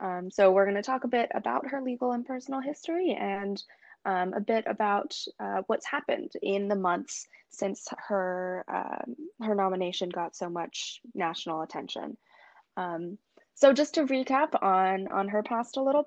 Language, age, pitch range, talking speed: English, 20-39, 185-250 Hz, 170 wpm